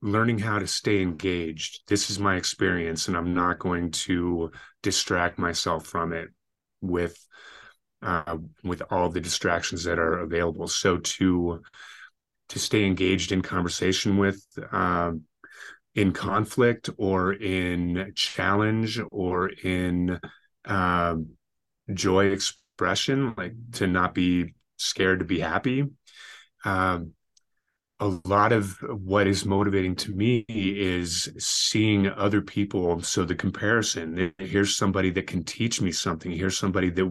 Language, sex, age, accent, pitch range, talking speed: English, male, 30-49, American, 85-100 Hz, 135 wpm